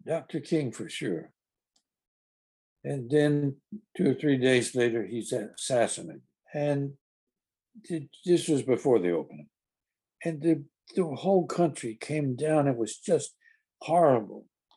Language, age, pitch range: English, 60-79, 120-165 Hz